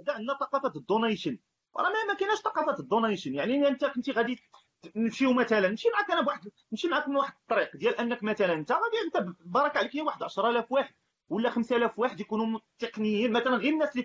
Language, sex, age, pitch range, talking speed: Arabic, male, 30-49, 215-290 Hz, 185 wpm